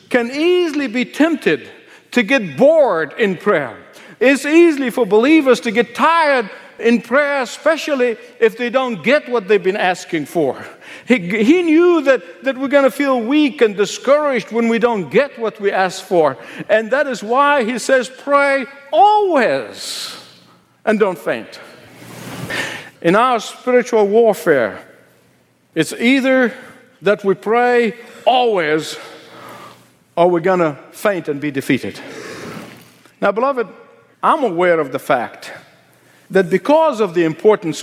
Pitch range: 185-270 Hz